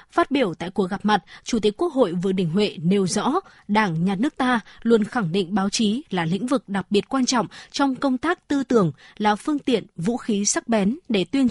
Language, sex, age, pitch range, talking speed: Vietnamese, female, 20-39, 195-250 Hz, 235 wpm